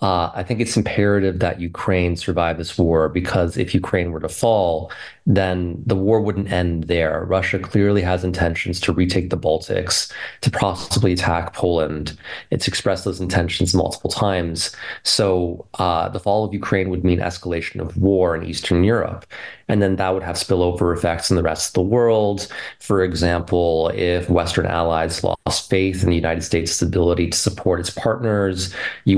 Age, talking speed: 30-49, 175 wpm